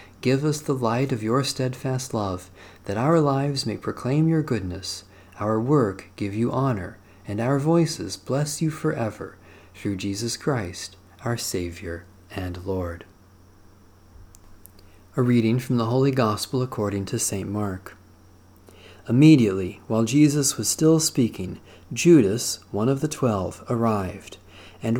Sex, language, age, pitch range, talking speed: male, English, 40-59, 95-130 Hz, 135 wpm